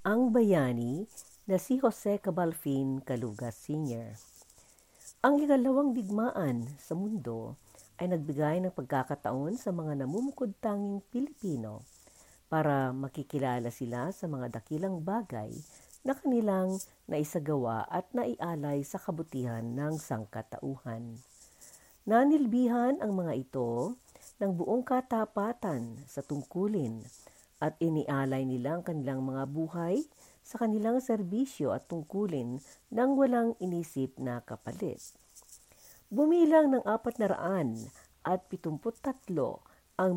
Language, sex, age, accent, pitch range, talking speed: Filipino, female, 50-69, native, 135-205 Hz, 105 wpm